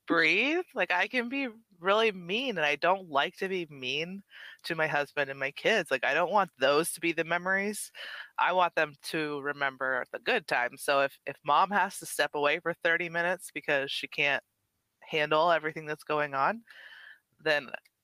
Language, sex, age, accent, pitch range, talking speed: English, female, 20-39, American, 140-180 Hz, 190 wpm